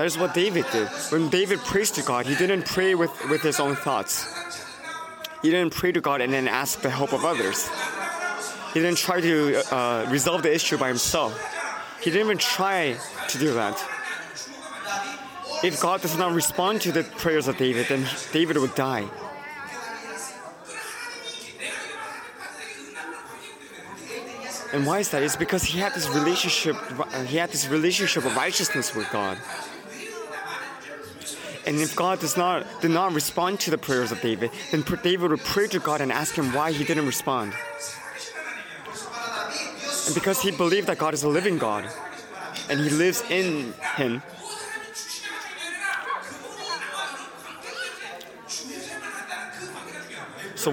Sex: male